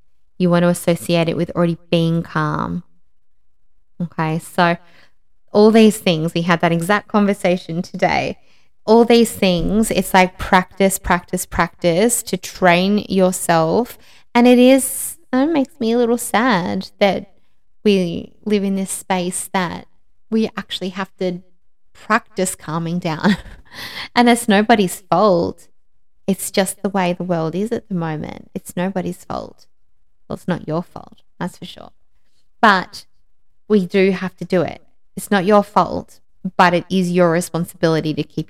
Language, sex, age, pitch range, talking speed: English, female, 20-39, 165-195 Hz, 150 wpm